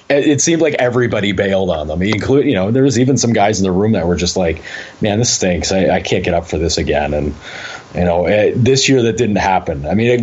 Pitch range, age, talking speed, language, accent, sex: 95-120 Hz, 30-49, 260 wpm, English, American, male